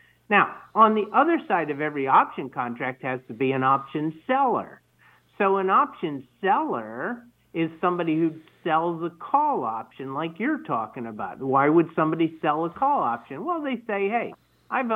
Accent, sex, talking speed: American, male, 170 wpm